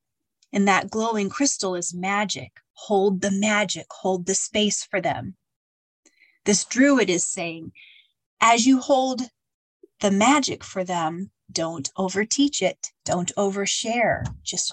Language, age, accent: English, 30-49, American